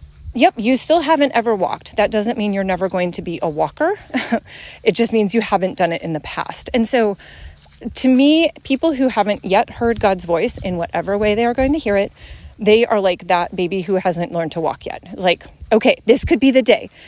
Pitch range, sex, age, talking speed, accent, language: 210-285 Hz, female, 30-49, 225 wpm, American, English